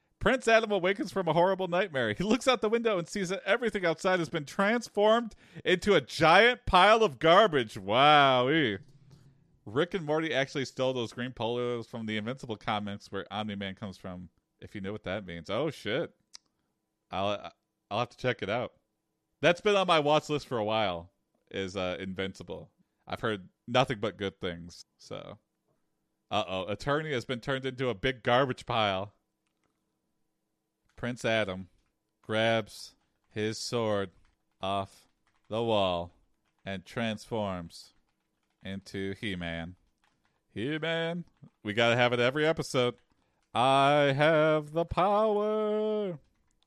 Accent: American